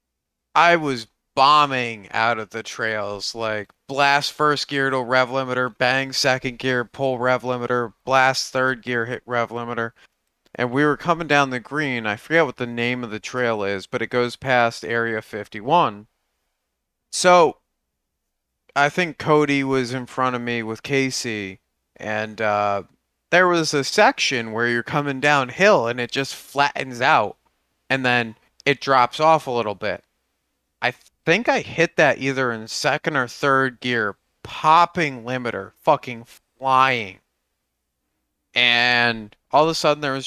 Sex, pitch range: male, 110-140 Hz